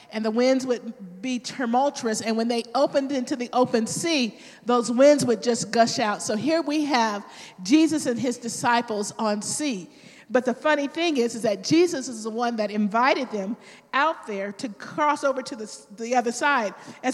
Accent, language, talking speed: American, English, 195 wpm